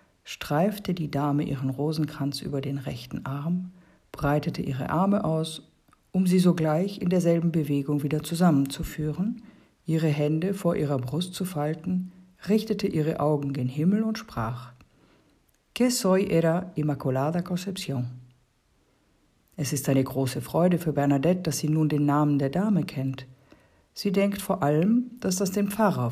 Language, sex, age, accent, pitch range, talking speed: German, female, 50-69, German, 145-190 Hz, 145 wpm